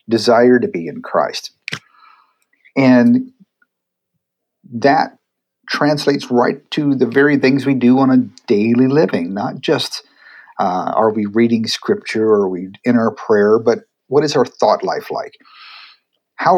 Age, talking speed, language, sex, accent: 50-69, 140 wpm, English, male, American